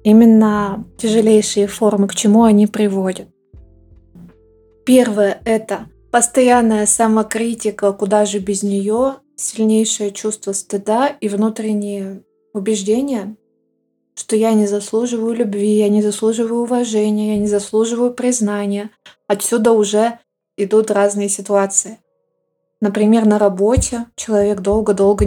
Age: 20-39